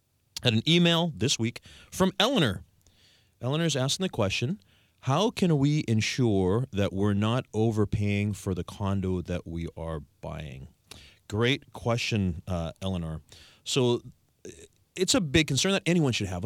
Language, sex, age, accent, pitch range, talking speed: English, male, 30-49, American, 95-125 Hz, 145 wpm